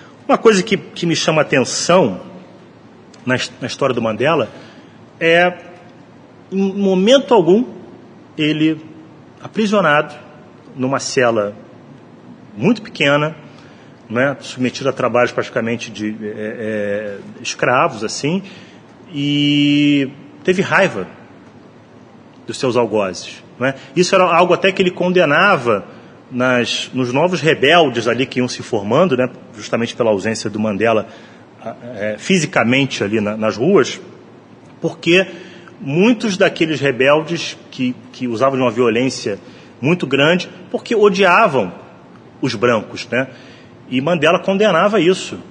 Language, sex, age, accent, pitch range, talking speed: Portuguese, male, 30-49, Brazilian, 125-170 Hz, 110 wpm